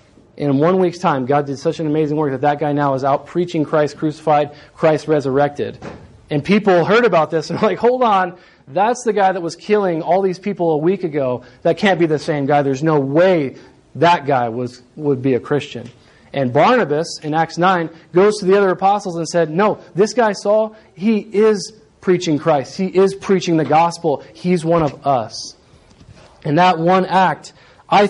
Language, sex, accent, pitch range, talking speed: English, male, American, 145-180 Hz, 200 wpm